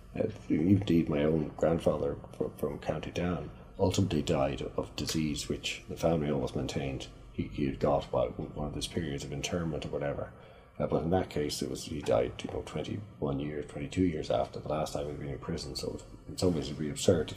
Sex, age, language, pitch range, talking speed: male, 40-59, English, 75-95 Hz, 200 wpm